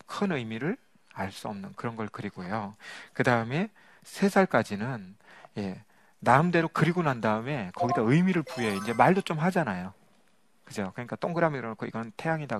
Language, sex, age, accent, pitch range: Korean, male, 40-59, native, 110-175 Hz